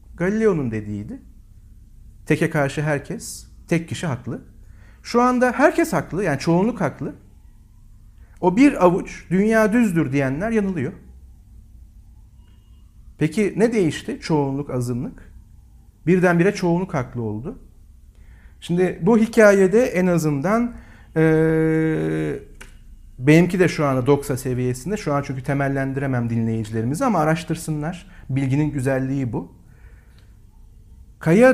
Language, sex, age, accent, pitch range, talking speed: Turkish, male, 50-69, native, 120-195 Hz, 105 wpm